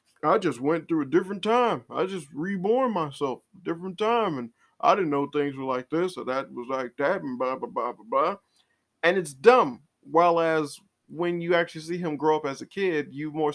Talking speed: 220 wpm